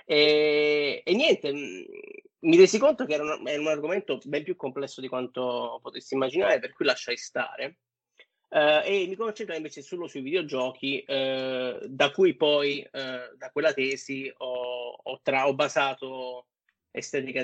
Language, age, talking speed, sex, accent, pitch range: Italian, 30-49, 155 wpm, male, native, 130-160 Hz